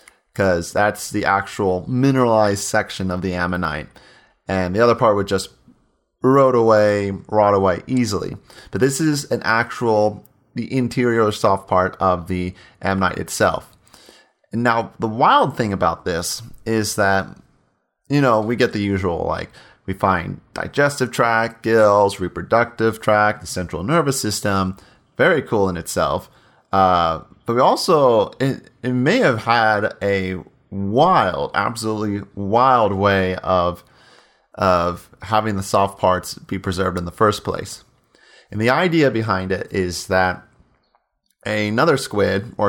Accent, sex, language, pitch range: American, male, English, 95-115 Hz